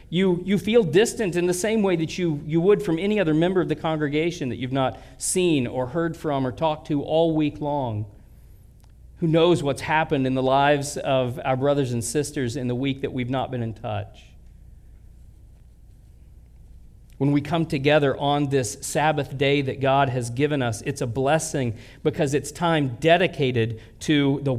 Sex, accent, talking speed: male, American, 185 wpm